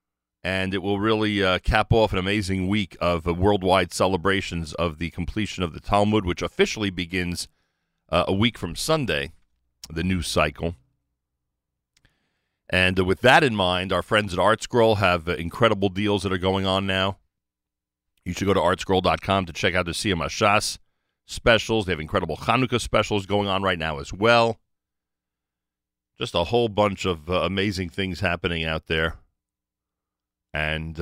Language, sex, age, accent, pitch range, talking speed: English, male, 40-59, American, 70-100 Hz, 165 wpm